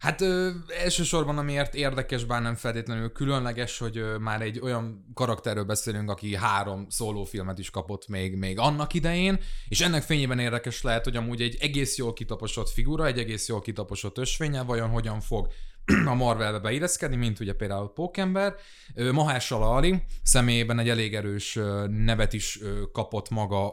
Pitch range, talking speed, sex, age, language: 110-140 Hz, 155 wpm, male, 20-39, Hungarian